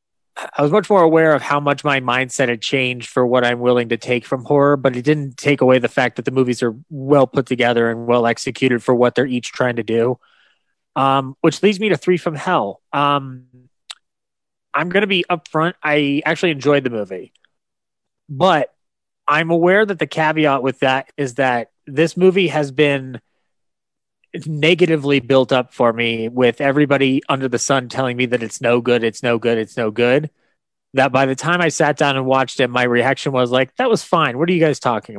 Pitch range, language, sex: 125-150 Hz, English, male